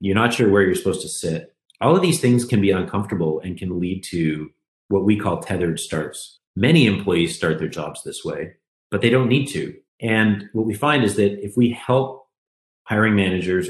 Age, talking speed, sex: 30-49, 205 wpm, male